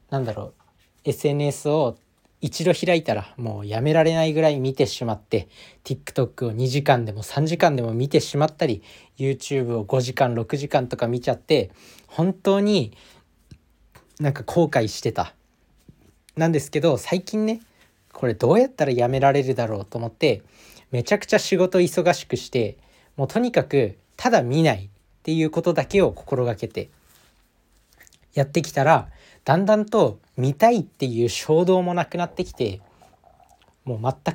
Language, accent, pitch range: Japanese, native, 120-165 Hz